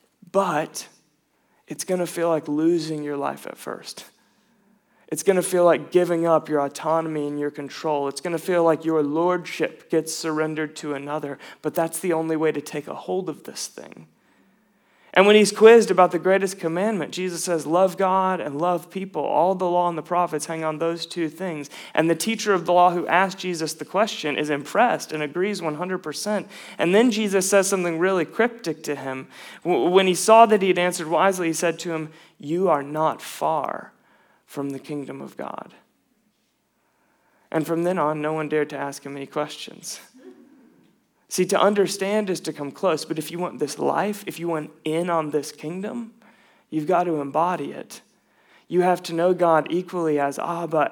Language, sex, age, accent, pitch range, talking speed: English, male, 30-49, American, 155-190 Hz, 190 wpm